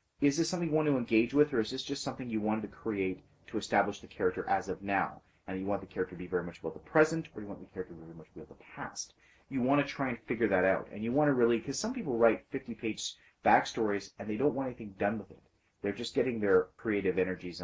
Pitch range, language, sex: 90-120 Hz, English, male